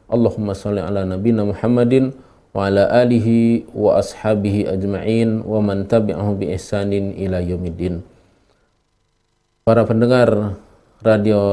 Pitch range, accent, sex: 95-105 Hz, native, male